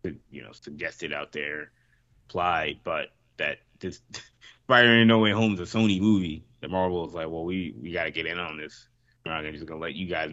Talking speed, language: 240 wpm, English